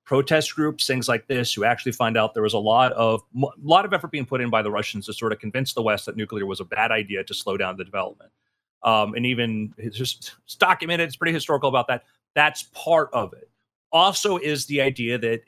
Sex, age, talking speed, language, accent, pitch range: male, 30-49, 240 wpm, English, American, 120-175 Hz